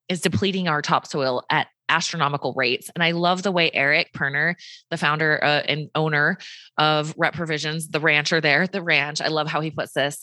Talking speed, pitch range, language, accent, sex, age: 195 wpm, 150-180 Hz, English, American, female, 20-39